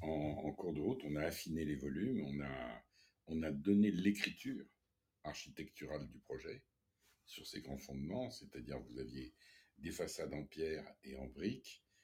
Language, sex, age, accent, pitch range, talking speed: French, male, 60-79, French, 75-100 Hz, 165 wpm